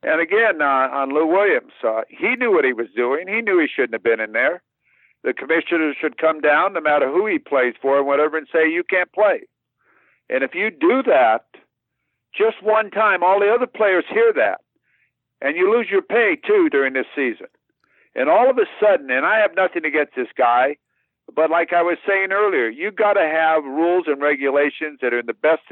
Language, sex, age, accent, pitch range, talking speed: English, male, 60-79, American, 150-195 Hz, 215 wpm